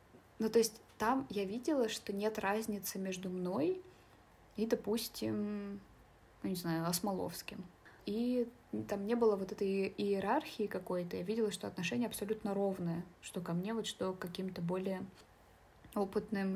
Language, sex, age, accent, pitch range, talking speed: Russian, female, 20-39, native, 190-220 Hz, 145 wpm